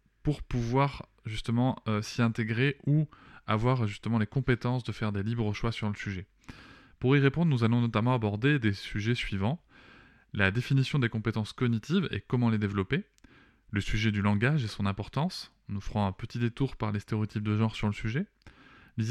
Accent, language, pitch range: French, French, 105-130 Hz